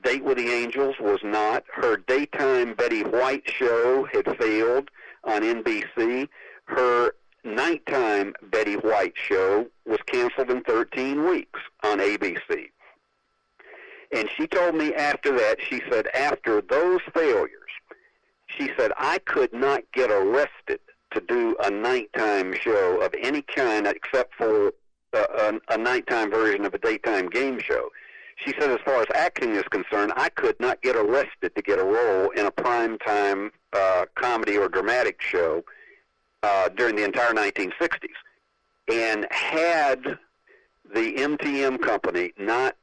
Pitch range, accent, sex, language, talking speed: 310-440 Hz, American, male, English, 140 wpm